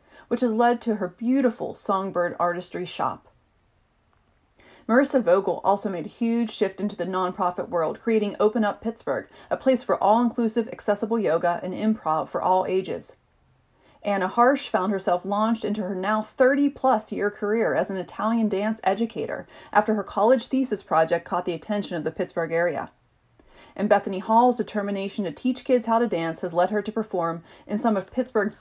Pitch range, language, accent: 180-225 Hz, English, American